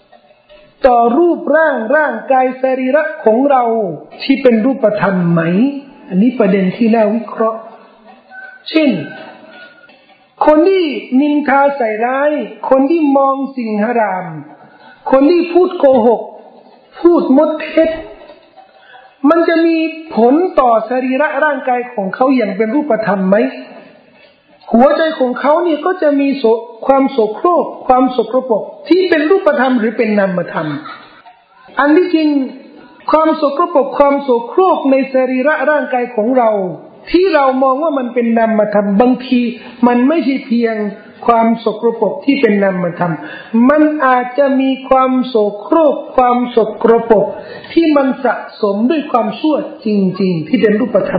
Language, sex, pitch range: Thai, male, 225-295 Hz